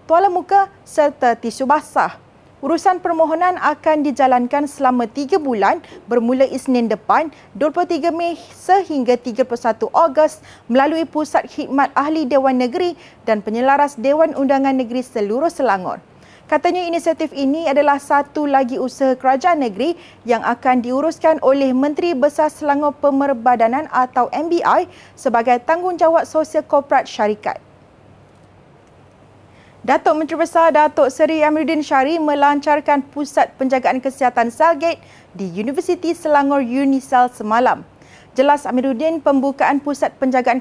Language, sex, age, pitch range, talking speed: Malay, female, 40-59, 260-315 Hz, 115 wpm